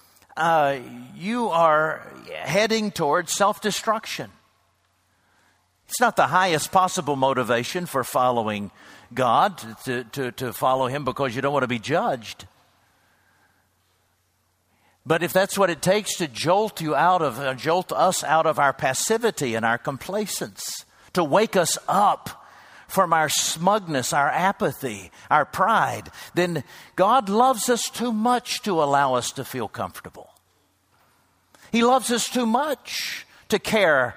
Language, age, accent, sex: English, 60-79, American, male